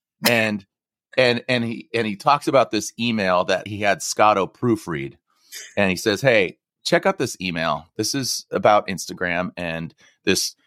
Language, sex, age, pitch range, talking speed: English, male, 30-49, 95-155 Hz, 165 wpm